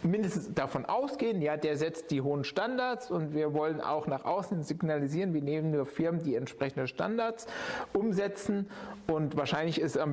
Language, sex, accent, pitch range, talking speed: German, male, German, 150-205 Hz, 165 wpm